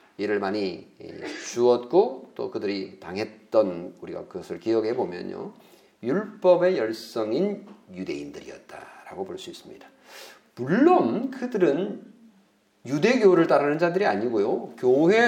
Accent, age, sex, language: native, 40-59, male, Korean